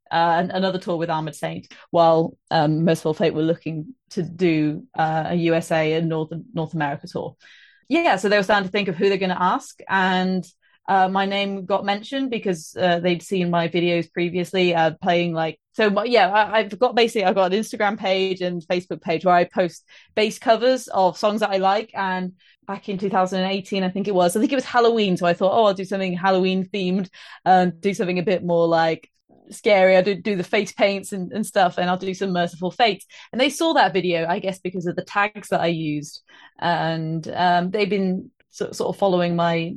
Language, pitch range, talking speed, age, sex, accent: English, 170-205 Hz, 220 wpm, 30-49, female, British